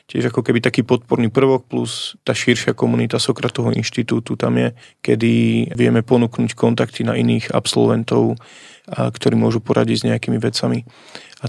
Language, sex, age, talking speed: Slovak, male, 30-49, 150 wpm